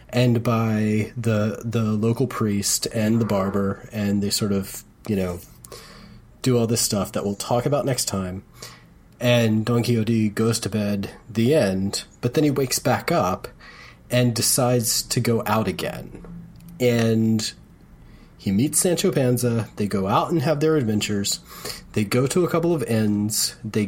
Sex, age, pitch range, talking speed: male, 30-49, 110-140 Hz, 165 wpm